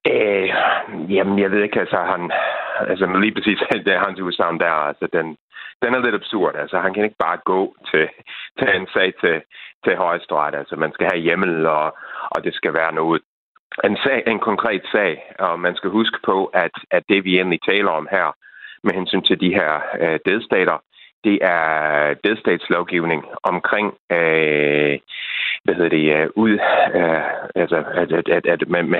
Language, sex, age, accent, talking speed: Danish, male, 30-49, native, 160 wpm